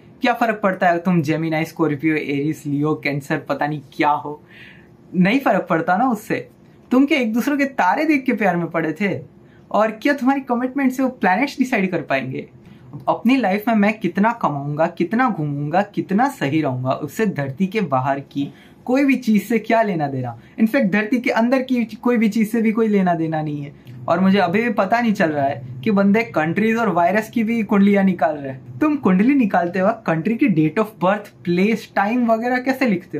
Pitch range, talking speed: 155-220 Hz, 145 wpm